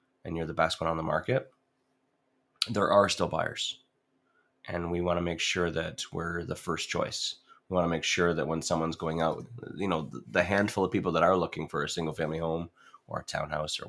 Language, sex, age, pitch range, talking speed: English, male, 30-49, 80-90 Hz, 215 wpm